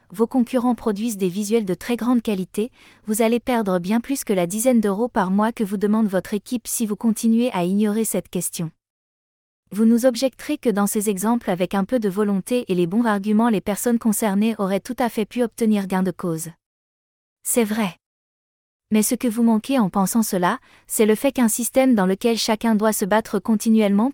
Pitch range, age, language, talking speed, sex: 195-235 Hz, 20-39, French, 205 wpm, female